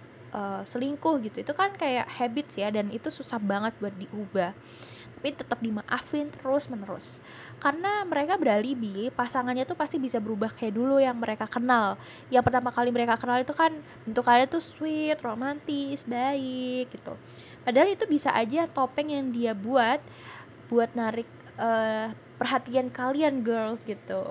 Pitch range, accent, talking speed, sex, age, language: 220-275 Hz, native, 150 wpm, female, 10-29, Indonesian